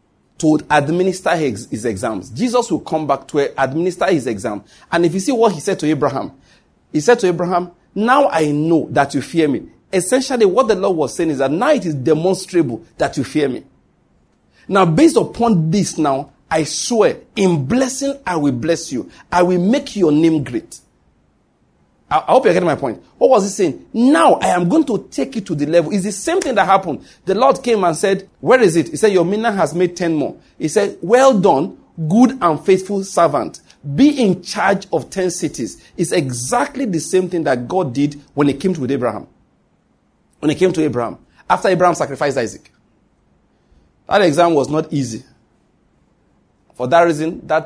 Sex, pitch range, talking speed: male, 155-200 Hz, 195 wpm